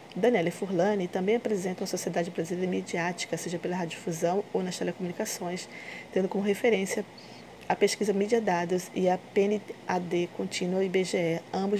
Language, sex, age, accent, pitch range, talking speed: Portuguese, female, 20-39, Brazilian, 175-205 Hz, 135 wpm